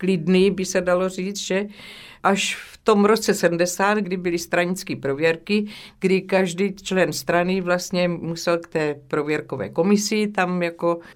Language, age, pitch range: Czech, 50-69, 150-180 Hz